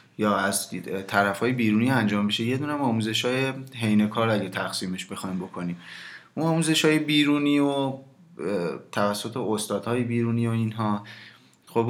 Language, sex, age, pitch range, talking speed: Persian, male, 20-39, 105-125 Hz, 140 wpm